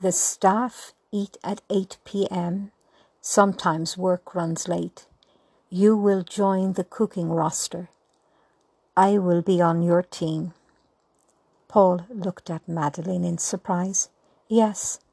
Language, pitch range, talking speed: English, 175-195 Hz, 110 wpm